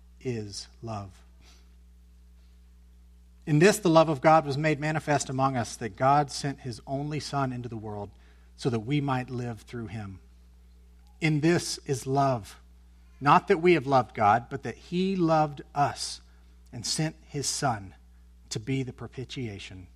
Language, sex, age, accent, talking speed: English, male, 40-59, American, 155 wpm